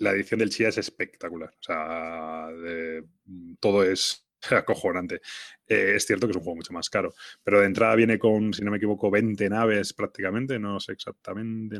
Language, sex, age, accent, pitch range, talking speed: Spanish, male, 20-39, Spanish, 90-105 Hz, 185 wpm